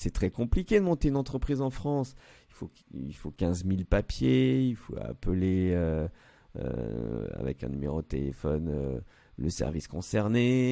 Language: French